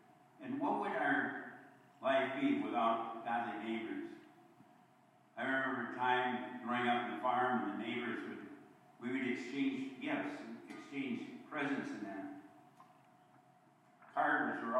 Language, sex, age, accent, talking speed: English, male, 60-79, American, 130 wpm